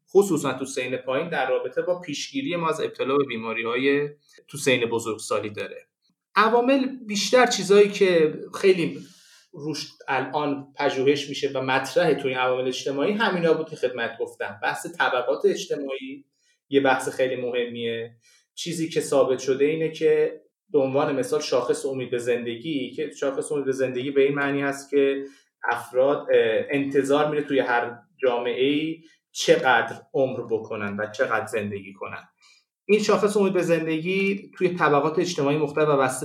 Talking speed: 145 wpm